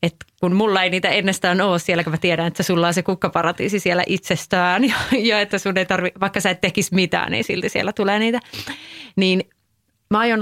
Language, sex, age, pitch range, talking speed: Finnish, female, 30-49, 170-210 Hz, 205 wpm